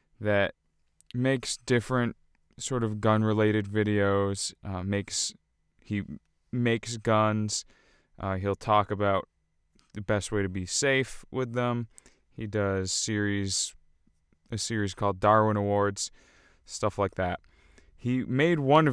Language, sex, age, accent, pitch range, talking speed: English, male, 20-39, American, 100-115 Hz, 120 wpm